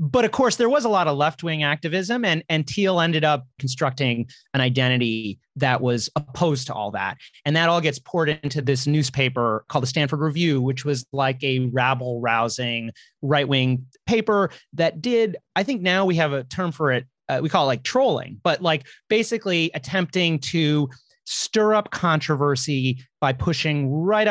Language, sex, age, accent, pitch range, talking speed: English, male, 30-49, American, 130-165 Hz, 185 wpm